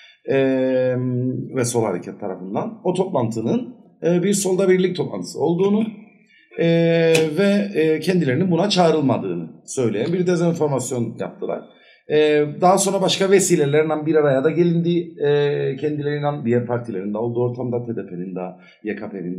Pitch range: 125-180 Hz